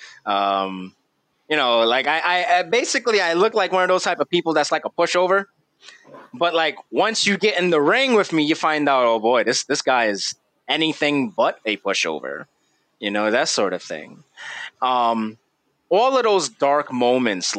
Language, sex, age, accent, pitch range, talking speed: English, male, 20-39, American, 120-165 Hz, 190 wpm